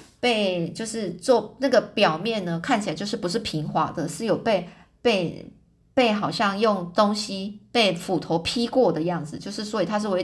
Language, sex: Chinese, female